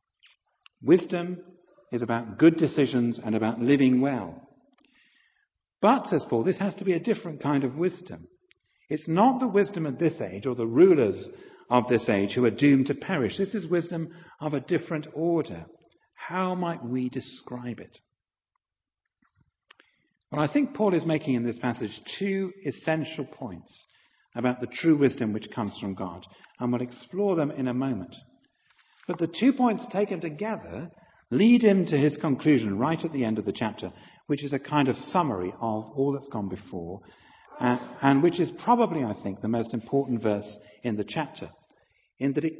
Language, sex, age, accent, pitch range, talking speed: English, male, 50-69, British, 120-180 Hz, 175 wpm